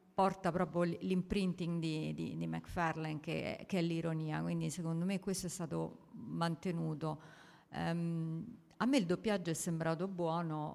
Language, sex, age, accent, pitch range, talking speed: Italian, female, 50-69, native, 165-200 Hz, 145 wpm